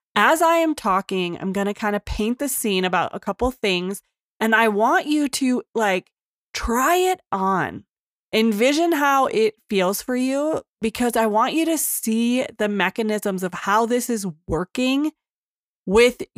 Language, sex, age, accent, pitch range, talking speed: English, female, 20-39, American, 195-250 Hz, 165 wpm